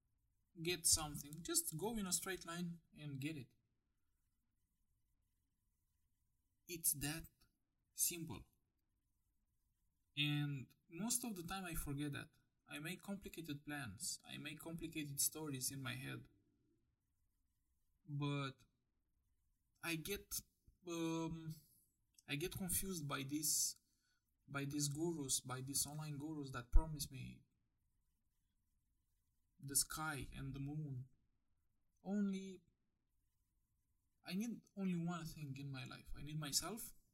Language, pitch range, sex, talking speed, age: English, 110-160 Hz, male, 110 wpm, 20-39